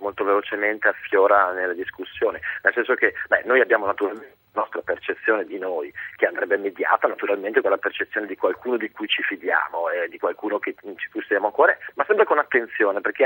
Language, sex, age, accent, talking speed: Italian, male, 40-59, native, 195 wpm